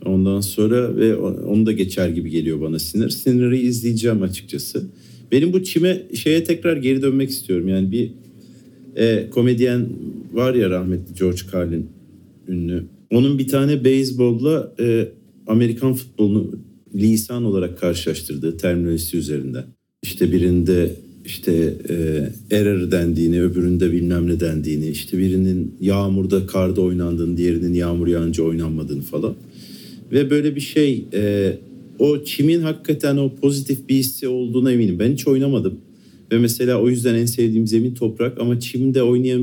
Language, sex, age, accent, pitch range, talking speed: Turkish, male, 50-69, native, 90-120 Hz, 135 wpm